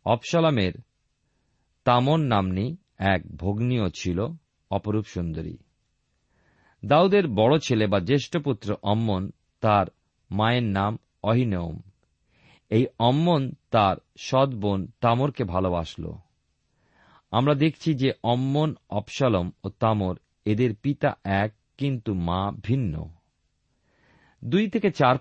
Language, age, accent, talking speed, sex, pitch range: Bengali, 40-59, native, 95 wpm, male, 100-140 Hz